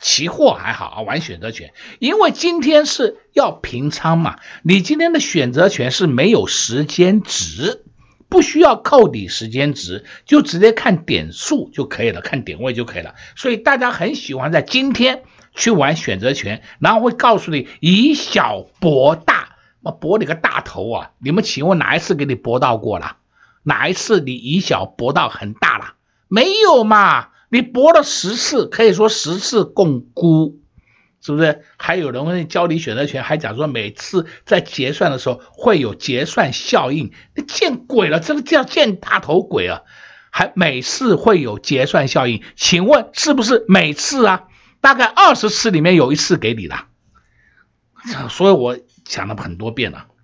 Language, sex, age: Chinese, male, 60-79